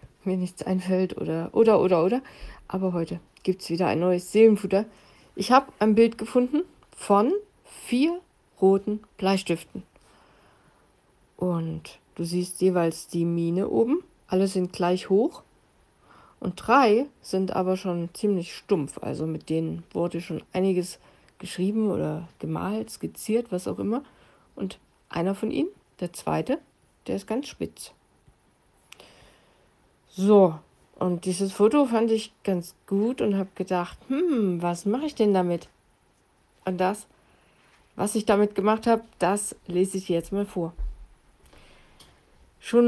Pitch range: 180-220 Hz